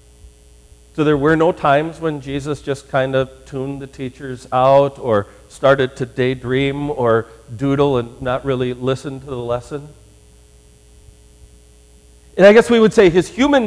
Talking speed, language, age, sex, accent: 155 wpm, English, 50-69, male, American